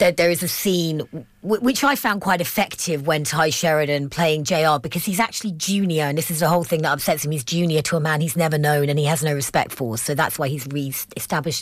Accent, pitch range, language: British, 150-185 Hz, English